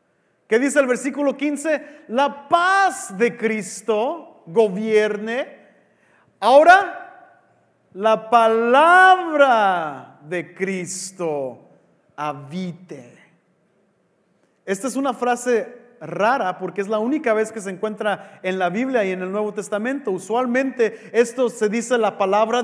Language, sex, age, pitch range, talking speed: English, male, 40-59, 210-285 Hz, 115 wpm